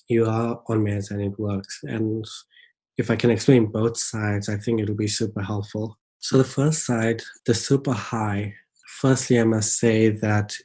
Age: 20-39